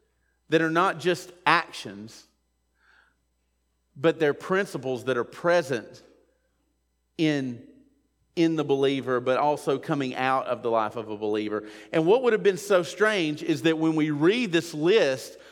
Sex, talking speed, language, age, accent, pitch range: male, 150 wpm, English, 40-59, American, 150-210 Hz